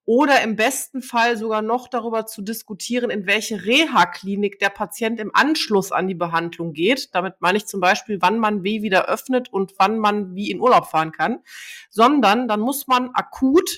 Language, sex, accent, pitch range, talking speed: German, female, German, 205-260 Hz, 185 wpm